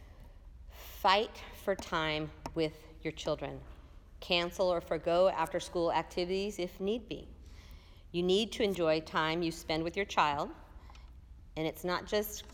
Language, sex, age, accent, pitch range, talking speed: English, female, 40-59, American, 140-180 Hz, 140 wpm